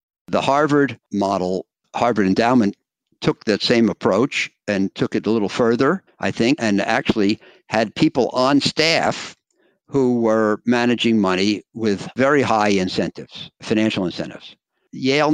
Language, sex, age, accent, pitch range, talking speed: English, male, 60-79, American, 95-115 Hz, 135 wpm